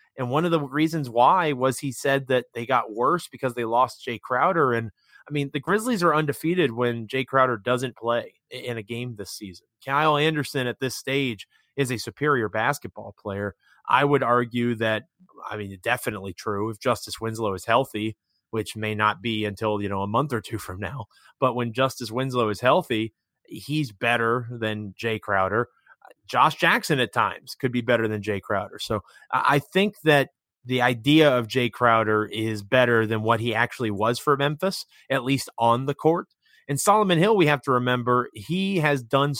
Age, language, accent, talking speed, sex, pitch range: 30-49, English, American, 190 wpm, male, 110-140 Hz